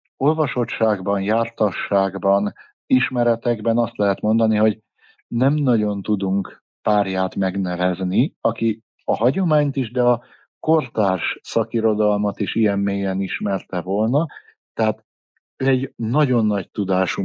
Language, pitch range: Hungarian, 100-120 Hz